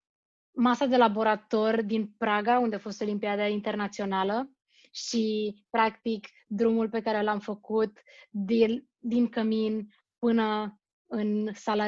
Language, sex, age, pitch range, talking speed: Romanian, female, 20-39, 205-230 Hz, 115 wpm